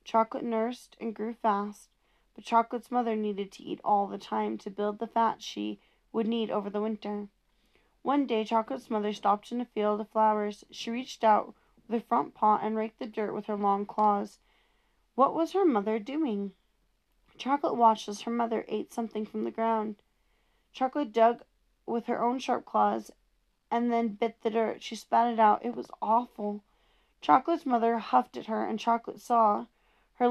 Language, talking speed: English, 180 wpm